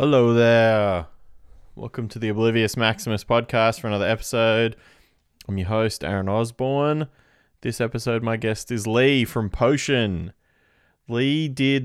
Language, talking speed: English, 130 wpm